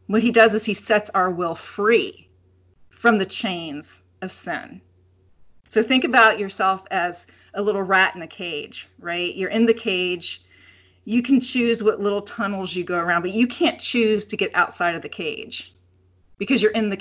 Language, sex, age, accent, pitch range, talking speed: English, female, 40-59, American, 170-215 Hz, 185 wpm